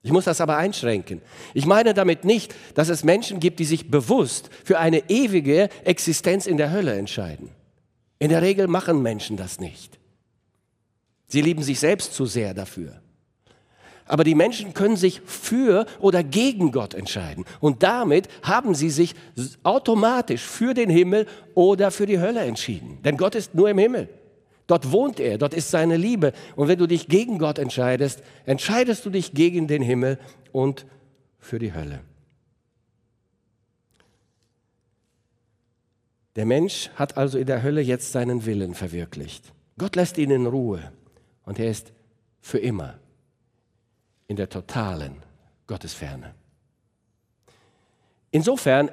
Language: German